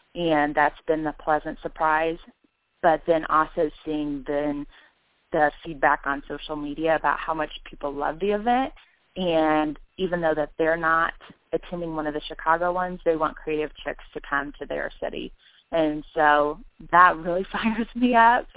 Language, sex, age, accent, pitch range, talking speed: English, female, 20-39, American, 145-165 Hz, 165 wpm